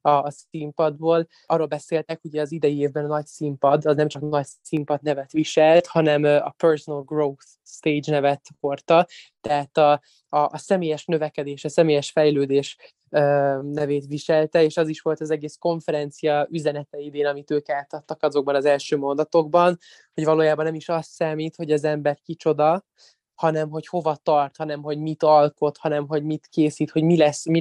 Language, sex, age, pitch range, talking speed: Hungarian, male, 20-39, 145-160 Hz, 165 wpm